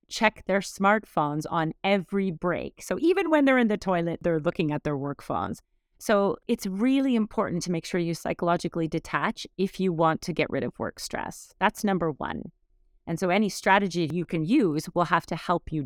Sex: female